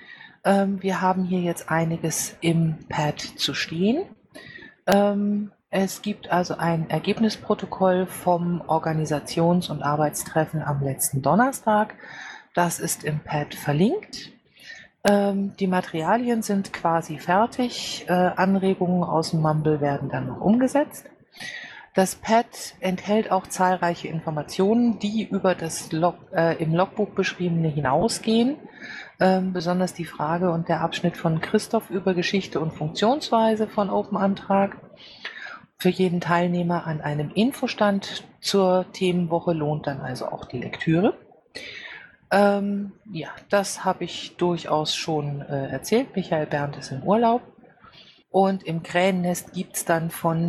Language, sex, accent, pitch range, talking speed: German, female, German, 160-200 Hz, 120 wpm